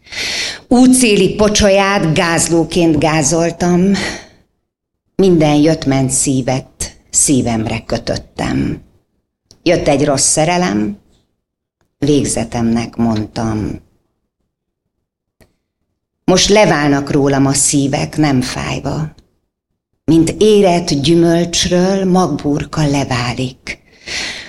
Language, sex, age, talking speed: Hungarian, female, 50-69, 70 wpm